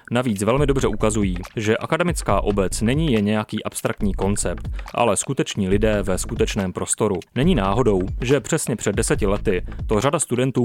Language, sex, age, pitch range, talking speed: Czech, male, 30-49, 100-125 Hz, 160 wpm